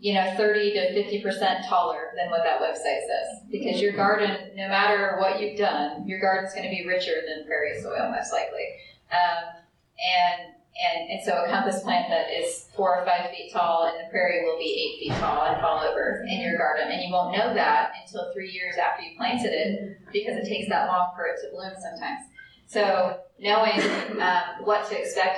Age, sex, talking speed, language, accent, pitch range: 20-39, female, 210 wpm, English, American, 185-230 Hz